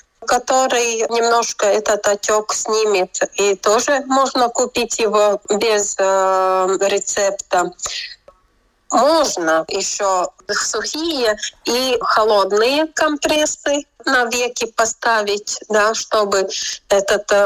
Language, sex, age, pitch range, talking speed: Russian, female, 30-49, 190-235 Hz, 85 wpm